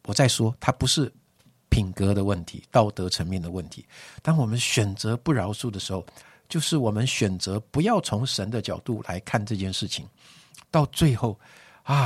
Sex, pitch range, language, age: male, 100-125 Hz, Chinese, 50-69